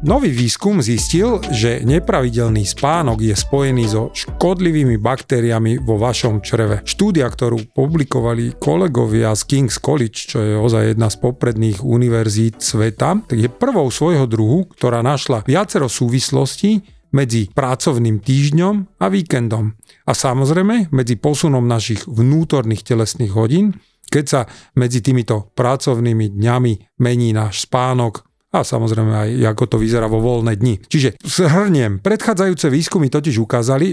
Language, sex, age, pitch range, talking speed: Slovak, male, 40-59, 115-155 Hz, 135 wpm